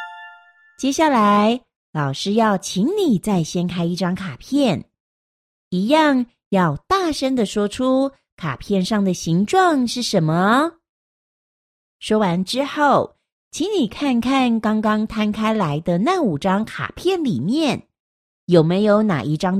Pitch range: 175-275 Hz